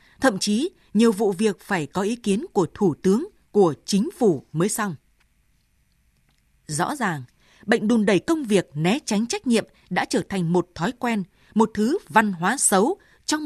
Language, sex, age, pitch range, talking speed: Vietnamese, female, 20-39, 185-245 Hz, 180 wpm